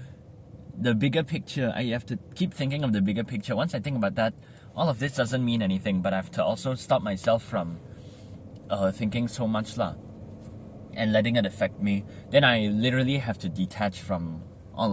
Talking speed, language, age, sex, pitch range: 195 wpm, English, 20-39, male, 105-130 Hz